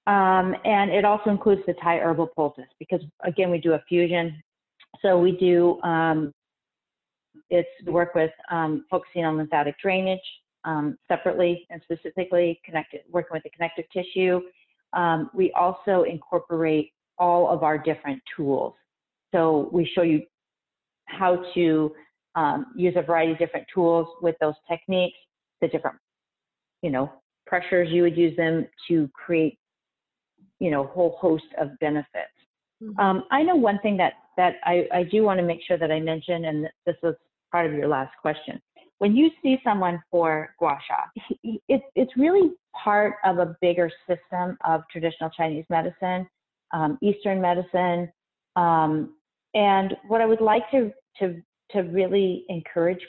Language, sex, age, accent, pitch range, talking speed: English, female, 40-59, American, 165-195 Hz, 155 wpm